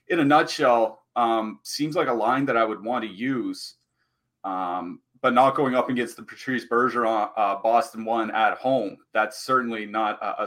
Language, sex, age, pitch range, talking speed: English, male, 30-49, 110-135 Hz, 190 wpm